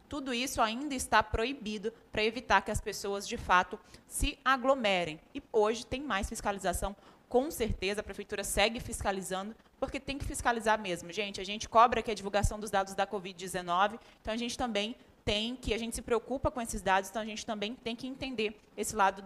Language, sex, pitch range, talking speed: Portuguese, female, 205-250 Hz, 195 wpm